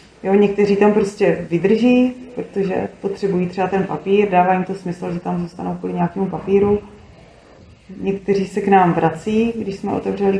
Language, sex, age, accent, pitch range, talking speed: Czech, female, 20-39, native, 180-200 Hz, 160 wpm